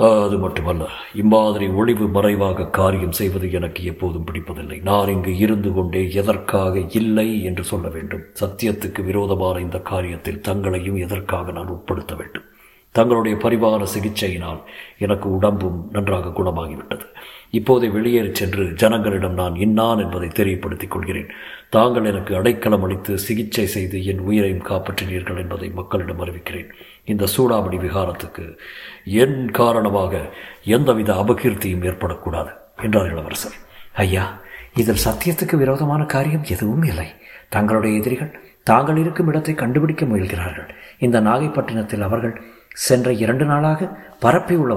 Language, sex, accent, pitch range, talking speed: Tamil, male, native, 95-120 Hz, 115 wpm